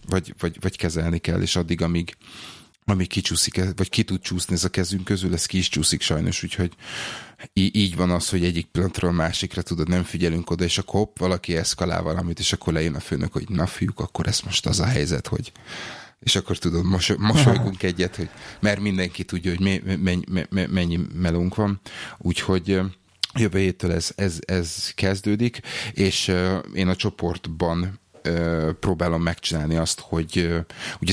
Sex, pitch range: male, 85-95 Hz